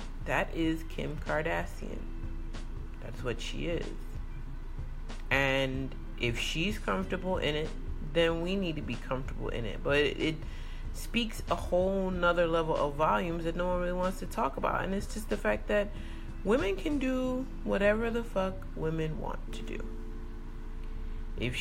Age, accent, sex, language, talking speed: 30-49, American, female, English, 155 wpm